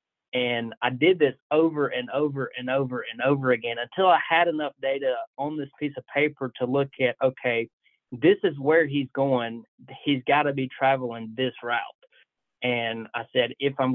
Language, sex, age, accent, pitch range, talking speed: English, male, 30-49, American, 120-145 Hz, 185 wpm